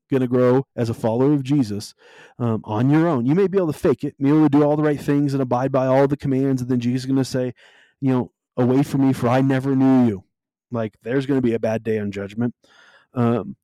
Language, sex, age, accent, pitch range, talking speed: English, male, 30-49, American, 120-145 Hz, 255 wpm